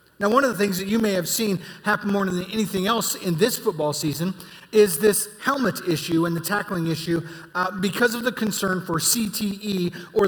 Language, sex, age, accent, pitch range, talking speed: English, male, 30-49, American, 170-215 Hz, 205 wpm